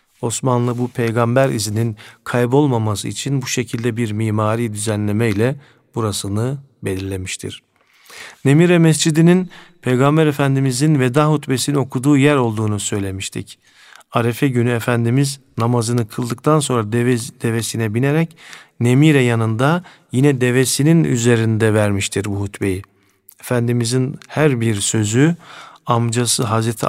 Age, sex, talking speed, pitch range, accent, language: 50-69, male, 105 wpm, 115-140 Hz, native, Turkish